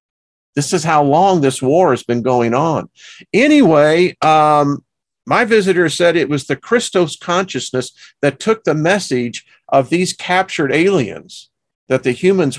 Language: English